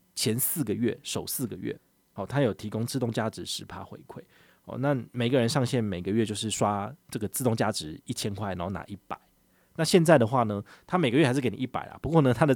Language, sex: Chinese, male